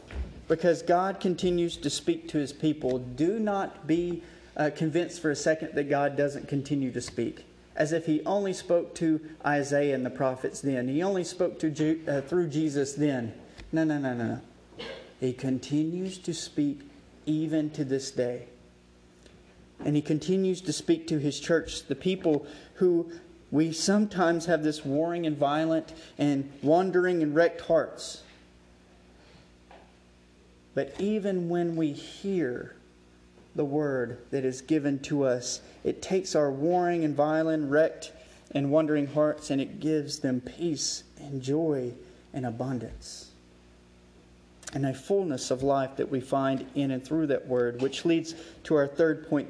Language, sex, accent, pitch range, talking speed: English, male, American, 125-165 Hz, 155 wpm